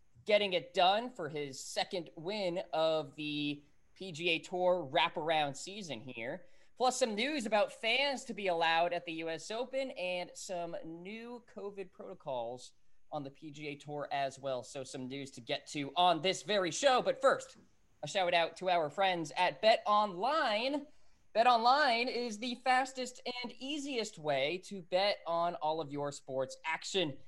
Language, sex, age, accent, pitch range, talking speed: English, male, 20-39, American, 160-220 Hz, 165 wpm